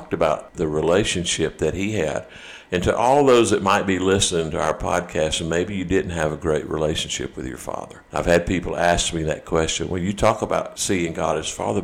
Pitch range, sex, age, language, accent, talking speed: 80-95 Hz, male, 50-69, English, American, 220 wpm